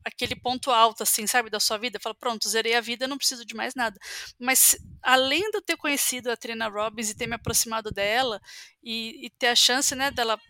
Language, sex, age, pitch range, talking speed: Portuguese, female, 20-39, 225-260 Hz, 225 wpm